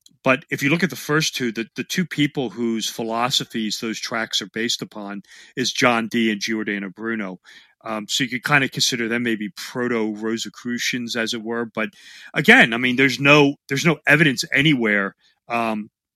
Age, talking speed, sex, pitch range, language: 40-59, 180 wpm, male, 110-130 Hz, English